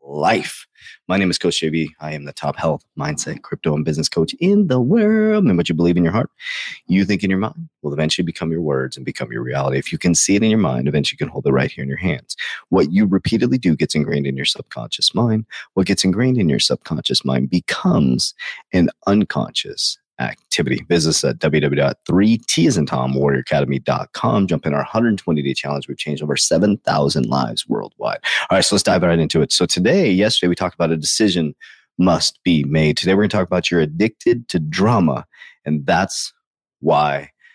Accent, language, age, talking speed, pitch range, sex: American, English, 30-49, 205 wpm, 75-105 Hz, male